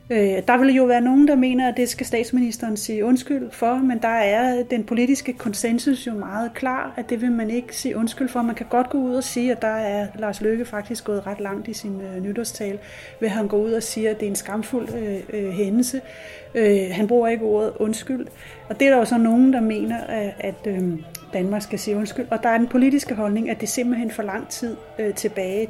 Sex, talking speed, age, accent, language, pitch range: female, 220 wpm, 30-49, native, Danish, 205-245 Hz